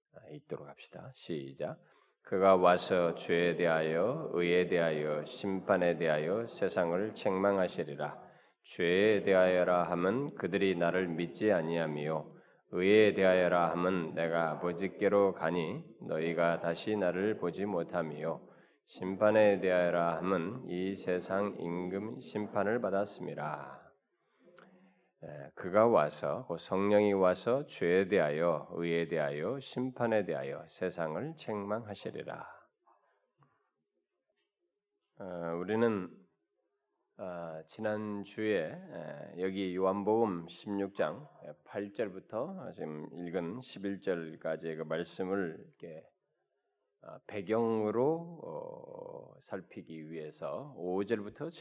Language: Korean